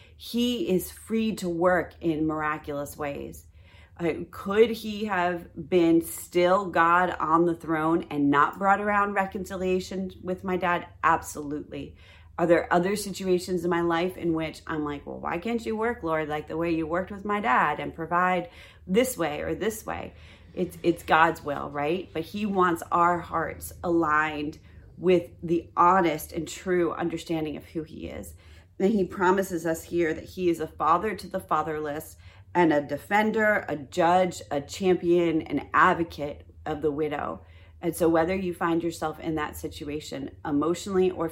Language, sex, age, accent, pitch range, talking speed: English, female, 30-49, American, 150-180 Hz, 170 wpm